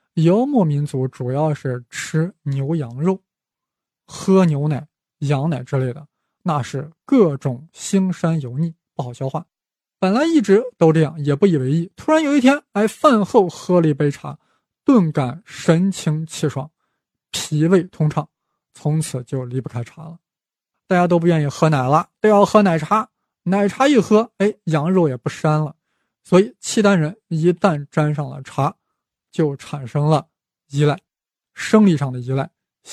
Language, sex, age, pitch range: Chinese, male, 20-39, 145-185 Hz